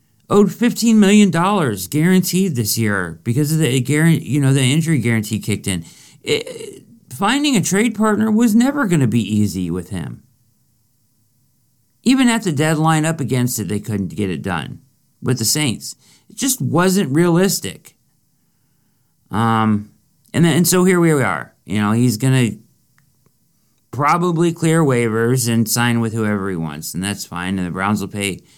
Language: English